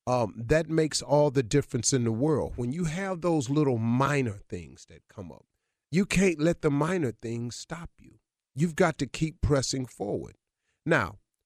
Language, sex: English, male